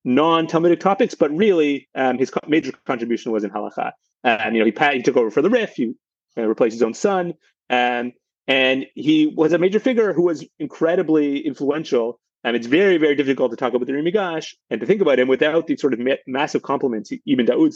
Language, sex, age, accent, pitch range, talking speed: English, male, 30-49, American, 125-165 Hz, 225 wpm